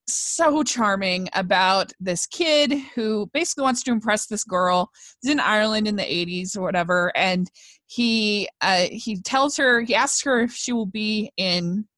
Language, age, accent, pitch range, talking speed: English, 20-39, American, 180-250 Hz, 170 wpm